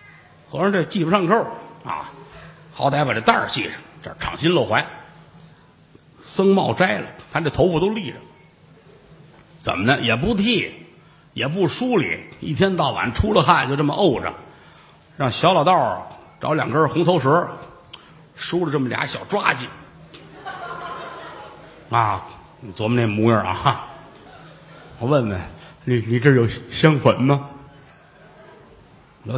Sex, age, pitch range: male, 50-69, 120-165 Hz